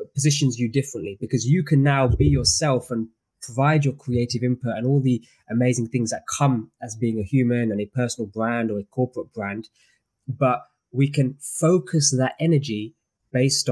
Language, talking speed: English, 175 wpm